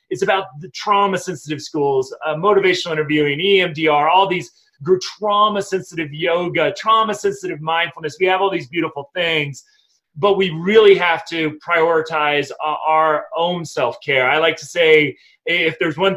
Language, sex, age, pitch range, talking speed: English, male, 30-49, 155-185 Hz, 135 wpm